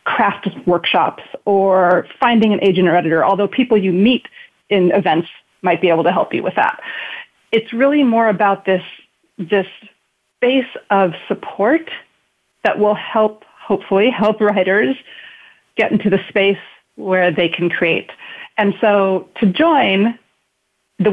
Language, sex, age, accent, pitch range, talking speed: English, female, 40-59, American, 180-225 Hz, 140 wpm